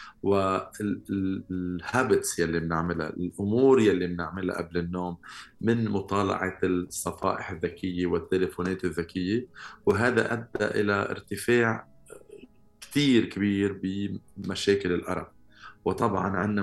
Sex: male